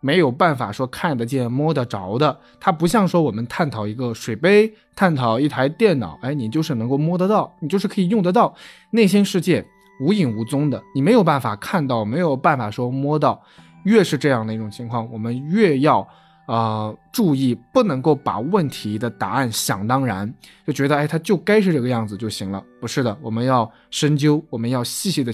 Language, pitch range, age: Chinese, 115-165 Hz, 20-39